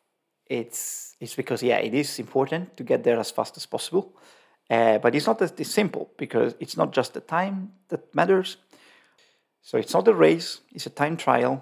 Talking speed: 195 wpm